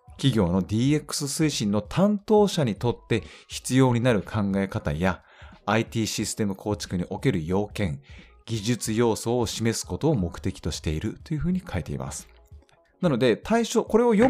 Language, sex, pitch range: Japanese, male, 90-145 Hz